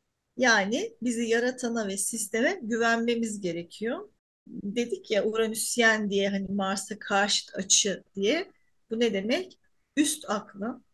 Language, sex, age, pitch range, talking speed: Turkish, female, 40-59, 210-265 Hz, 115 wpm